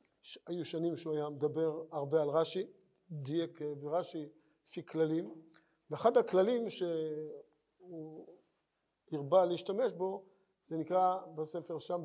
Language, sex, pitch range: Hebrew, male, 160-215 Hz